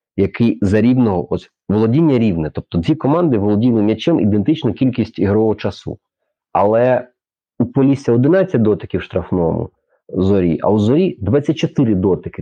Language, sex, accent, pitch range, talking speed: Ukrainian, male, native, 90-125 Hz, 135 wpm